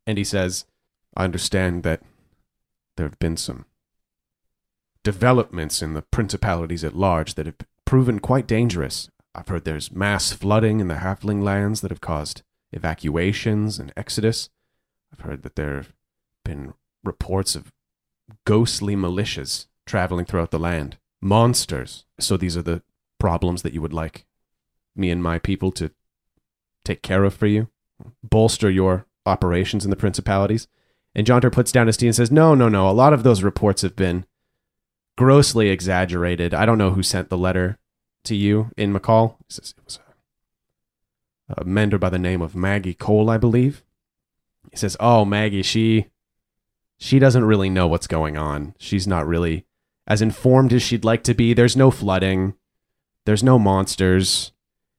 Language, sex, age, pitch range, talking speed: English, male, 30-49, 90-110 Hz, 160 wpm